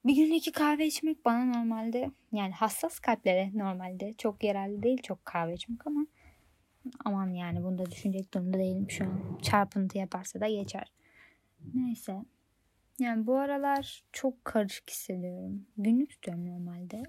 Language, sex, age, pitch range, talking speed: Turkish, female, 20-39, 190-245 Hz, 135 wpm